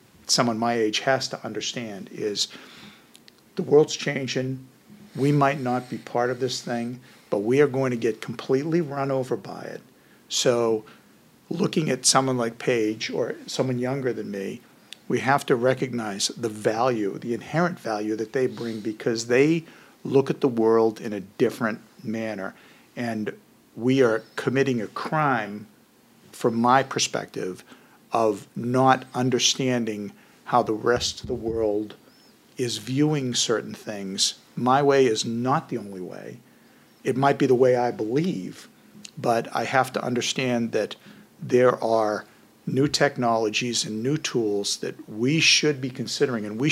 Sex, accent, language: male, American, English